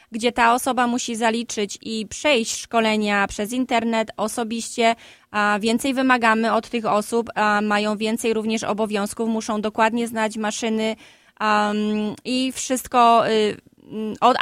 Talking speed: 110 wpm